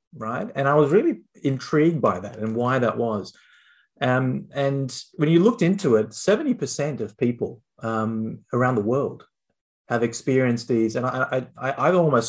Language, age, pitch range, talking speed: English, 30-49, 110-130 Hz, 170 wpm